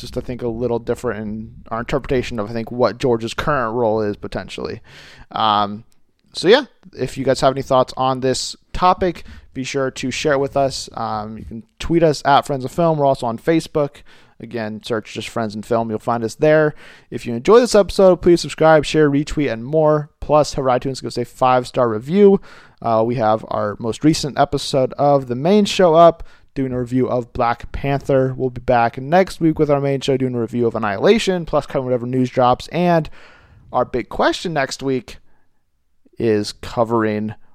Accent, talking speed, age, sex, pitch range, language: American, 200 wpm, 30-49, male, 115-155 Hz, English